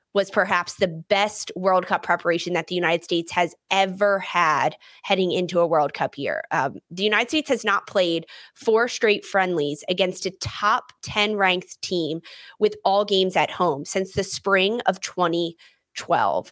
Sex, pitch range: female, 180-210 Hz